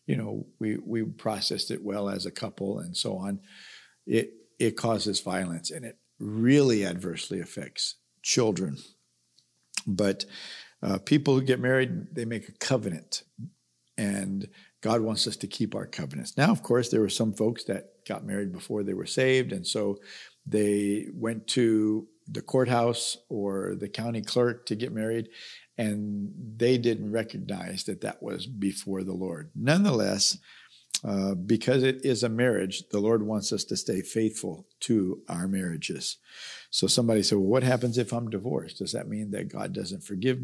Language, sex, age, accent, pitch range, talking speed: English, male, 50-69, American, 100-120 Hz, 165 wpm